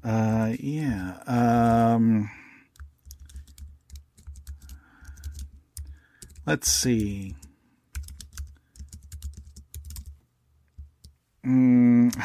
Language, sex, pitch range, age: English, male, 75-115 Hz, 50-69